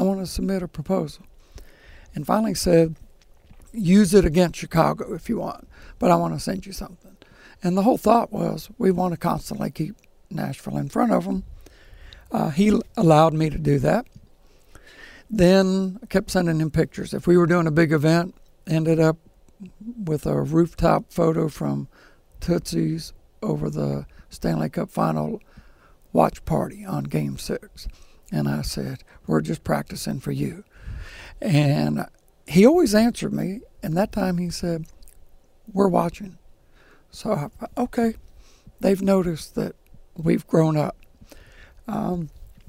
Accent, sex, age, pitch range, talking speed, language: American, male, 60-79, 145-195 Hz, 150 wpm, English